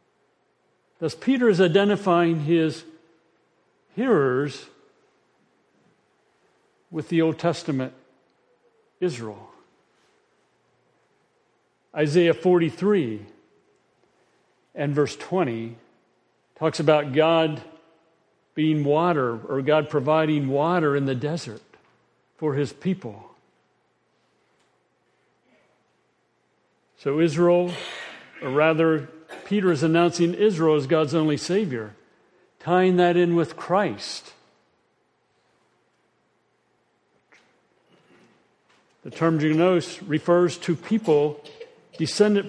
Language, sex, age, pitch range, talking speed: English, male, 50-69, 150-195 Hz, 80 wpm